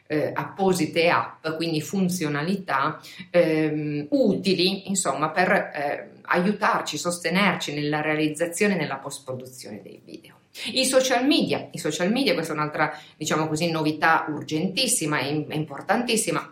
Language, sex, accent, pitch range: Italian, female, native, 155-195 Hz